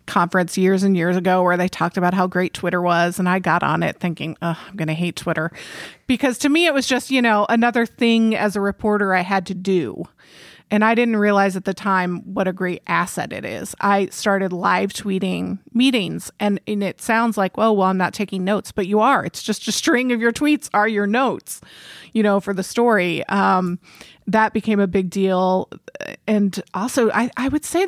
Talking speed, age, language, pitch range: 215 wpm, 30-49, English, 190-220 Hz